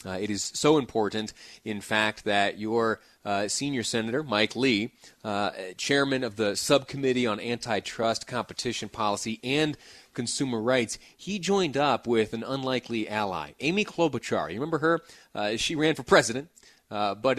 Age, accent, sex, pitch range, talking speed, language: 30-49, American, male, 105-125 Hz, 155 wpm, English